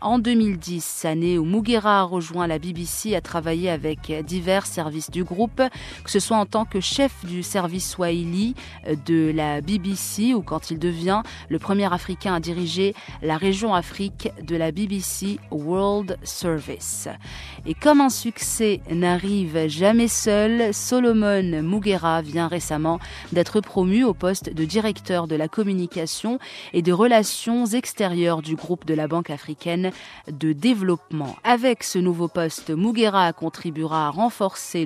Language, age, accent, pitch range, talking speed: French, 30-49, French, 160-205 Hz, 150 wpm